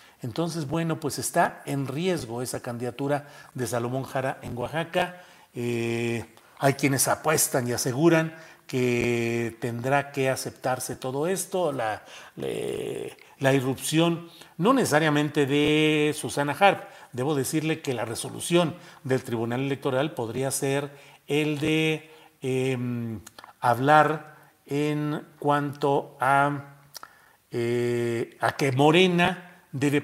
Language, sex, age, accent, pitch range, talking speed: Spanish, male, 40-59, Mexican, 130-165 Hz, 110 wpm